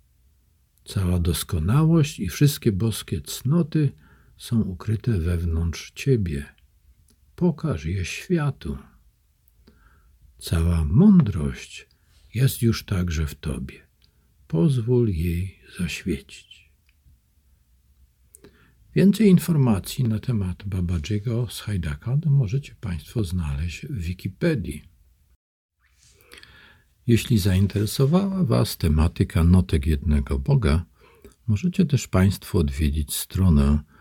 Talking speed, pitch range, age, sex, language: 85 wpm, 75-110 Hz, 50-69, male, Polish